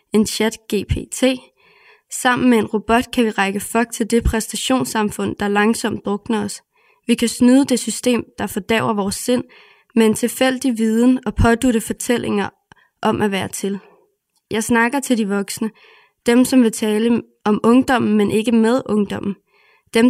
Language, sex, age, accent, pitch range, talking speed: Danish, female, 20-39, native, 210-245 Hz, 160 wpm